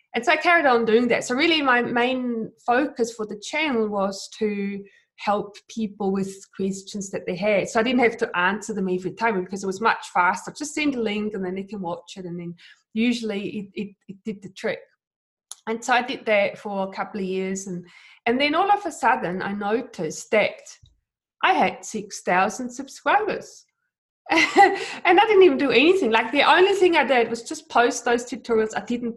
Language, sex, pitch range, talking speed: English, female, 195-250 Hz, 205 wpm